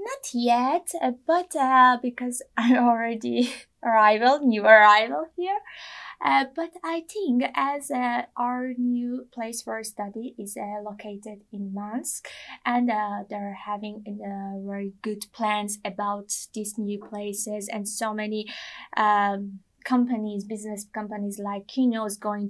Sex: female